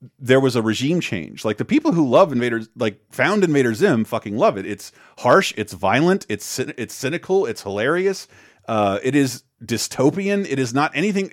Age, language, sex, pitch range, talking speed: 30-49, English, male, 110-150 Hz, 185 wpm